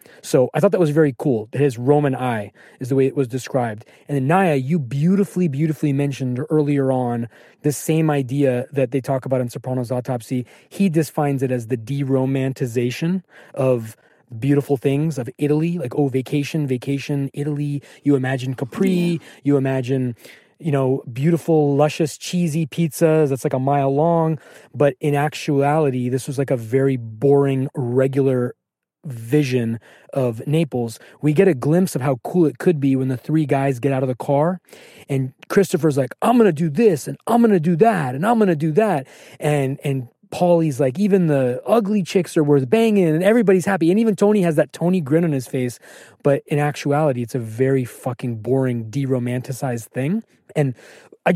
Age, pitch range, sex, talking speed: 20-39, 130-165 Hz, male, 180 wpm